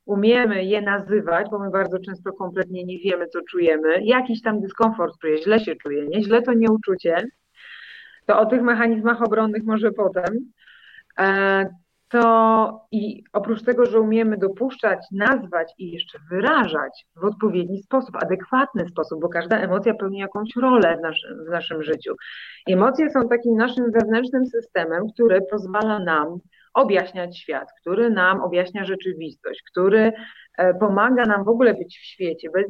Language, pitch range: Polish, 190-235 Hz